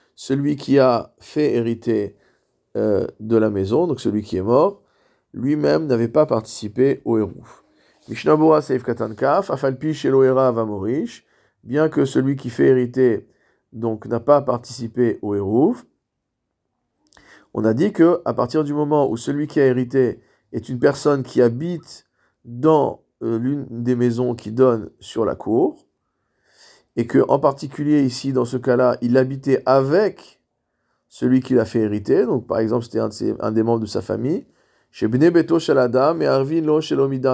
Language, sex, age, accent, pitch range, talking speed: French, male, 50-69, French, 120-155 Hz, 155 wpm